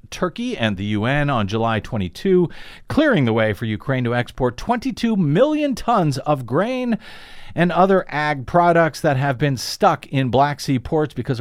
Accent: American